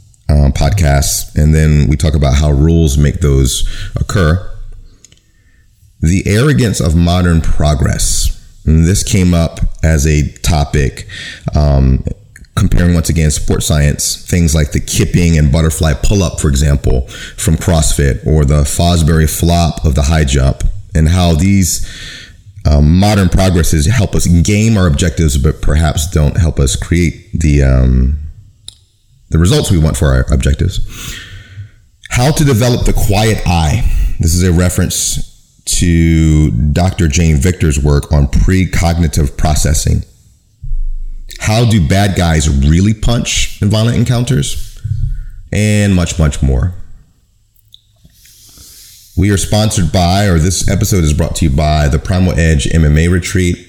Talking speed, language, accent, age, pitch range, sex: 140 wpm, English, American, 30-49, 75-100 Hz, male